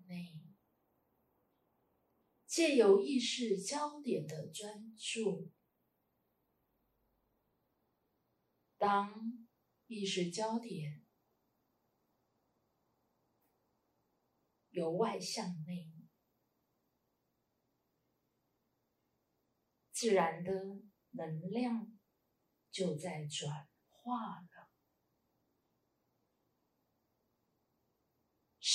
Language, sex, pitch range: Chinese, female, 180-240 Hz